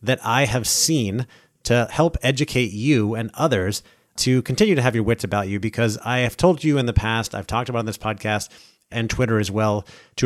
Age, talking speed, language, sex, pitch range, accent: 30-49, 215 wpm, English, male, 105-130 Hz, American